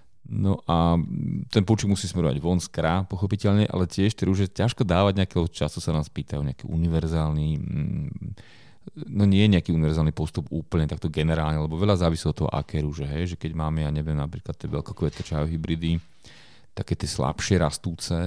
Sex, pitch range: male, 80-100 Hz